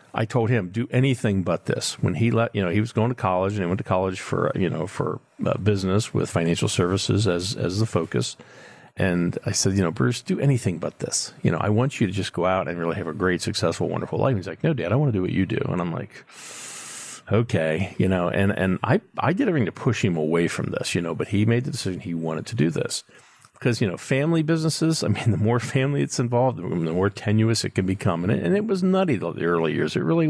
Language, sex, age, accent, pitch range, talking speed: English, male, 40-59, American, 95-120 Hz, 260 wpm